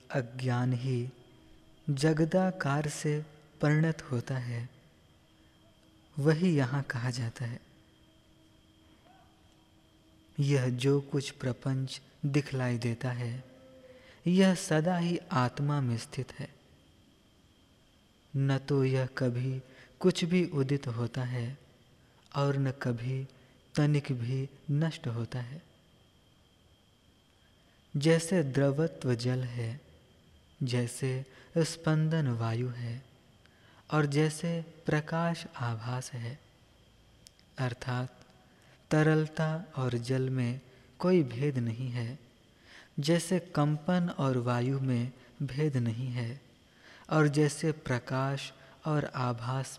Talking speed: 95 wpm